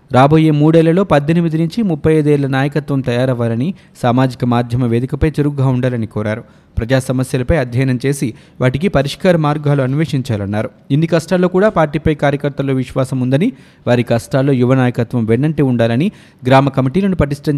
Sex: male